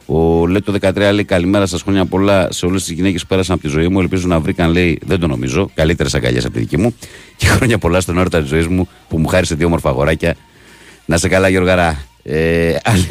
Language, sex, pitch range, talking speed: Greek, male, 80-95 Hz, 235 wpm